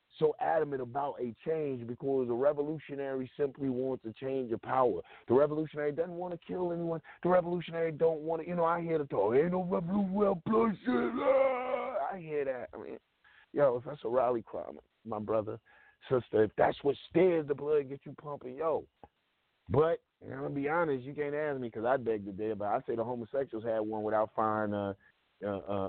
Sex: male